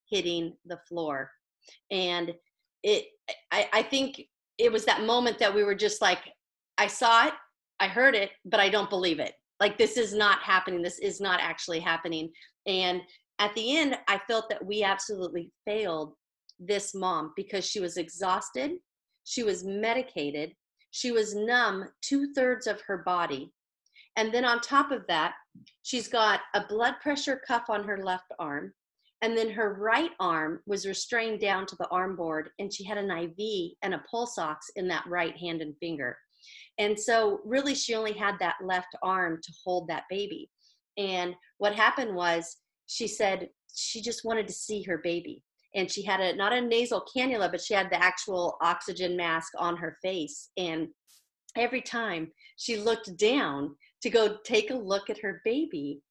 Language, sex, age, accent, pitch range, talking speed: English, female, 40-59, American, 175-230 Hz, 180 wpm